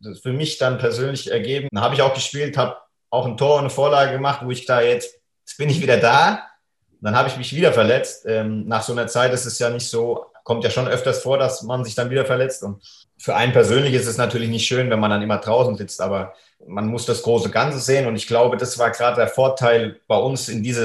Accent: German